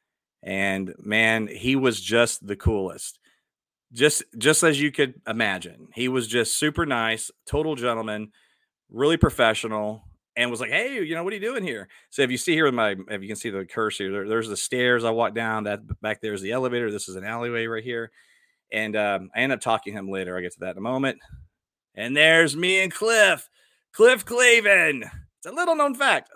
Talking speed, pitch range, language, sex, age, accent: 215 wpm, 105-145 Hz, English, male, 30-49, American